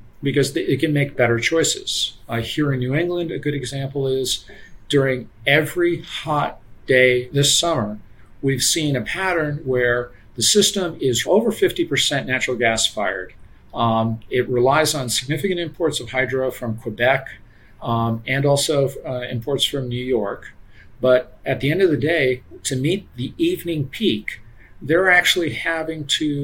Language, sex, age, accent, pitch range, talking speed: English, male, 50-69, American, 120-165 Hz, 155 wpm